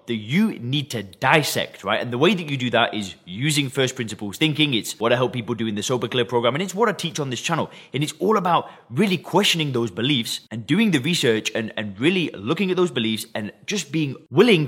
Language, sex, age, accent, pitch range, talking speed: English, male, 20-39, British, 120-160 Hz, 245 wpm